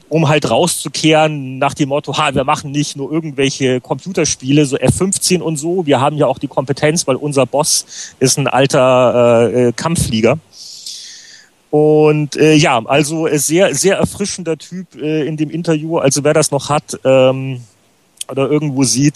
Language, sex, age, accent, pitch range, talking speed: German, male, 40-59, German, 120-150 Hz, 165 wpm